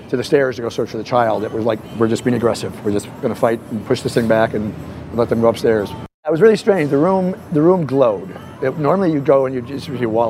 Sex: male